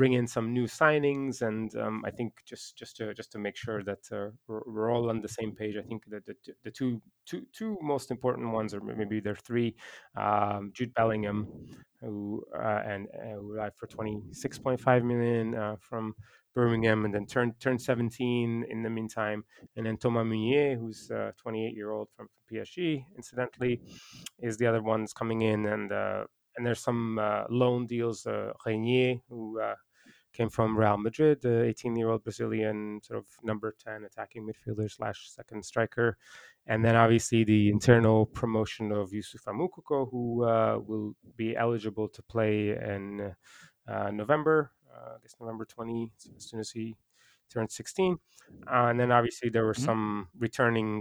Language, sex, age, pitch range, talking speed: English, male, 20-39, 110-120 Hz, 180 wpm